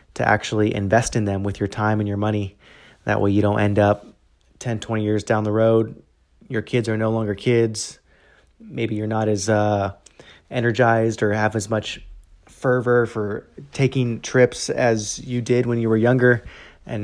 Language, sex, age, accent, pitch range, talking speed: English, male, 30-49, American, 105-115 Hz, 180 wpm